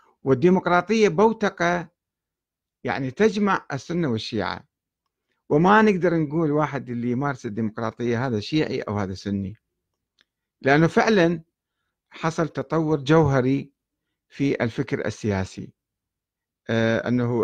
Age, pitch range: 50-69, 115-160 Hz